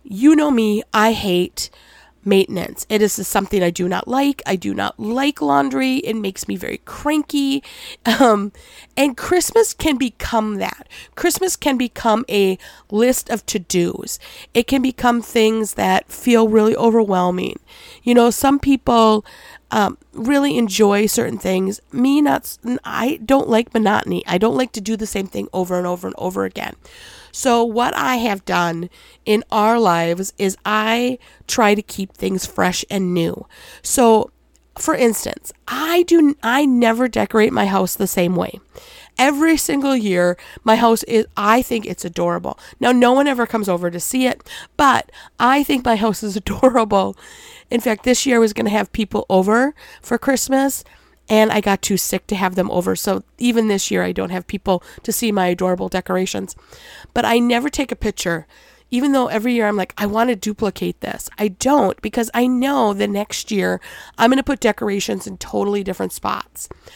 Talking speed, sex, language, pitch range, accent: 175 wpm, female, English, 195-255 Hz, American